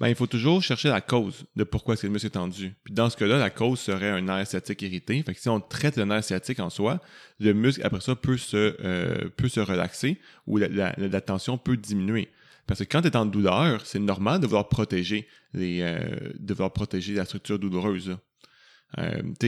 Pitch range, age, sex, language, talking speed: 100-130 Hz, 30-49, male, French, 230 wpm